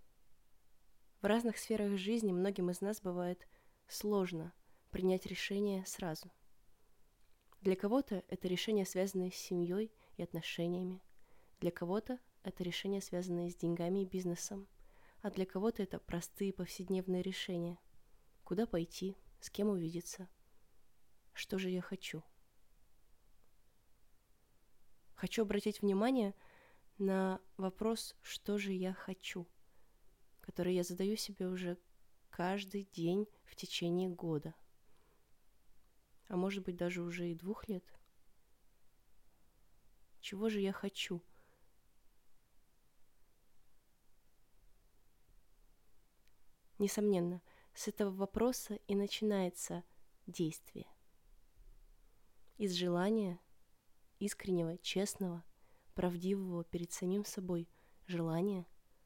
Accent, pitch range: native, 175-205 Hz